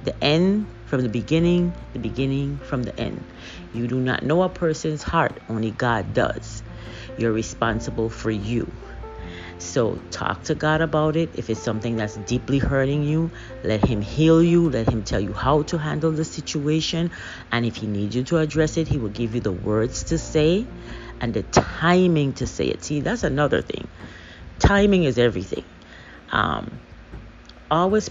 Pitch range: 105-145 Hz